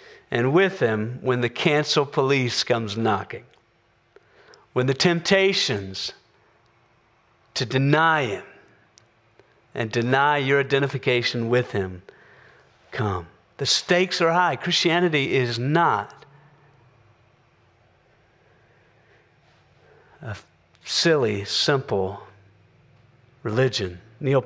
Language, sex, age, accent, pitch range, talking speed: English, male, 50-69, American, 115-140 Hz, 85 wpm